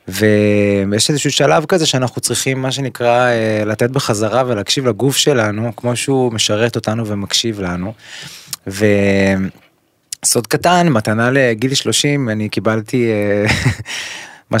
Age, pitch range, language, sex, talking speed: 20-39, 105-130 Hz, Hebrew, male, 110 wpm